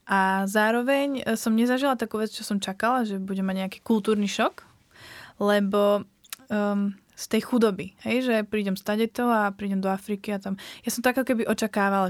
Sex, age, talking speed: female, 20-39, 185 wpm